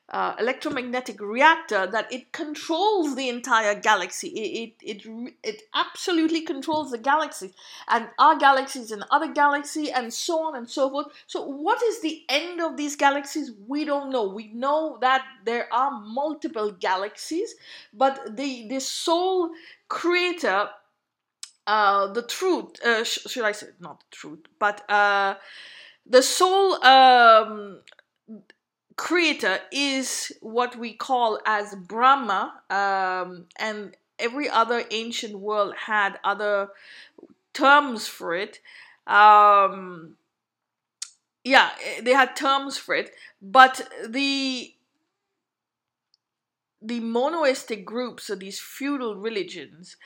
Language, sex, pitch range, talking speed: English, female, 215-300 Hz, 120 wpm